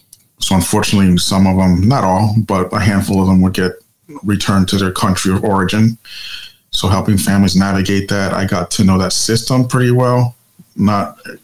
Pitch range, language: 100-115 Hz, English